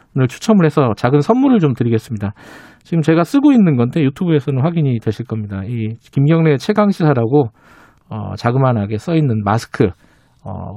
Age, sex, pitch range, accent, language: 40-59, male, 120-175 Hz, native, Korean